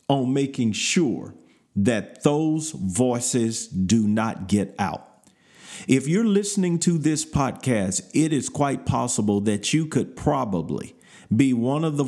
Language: English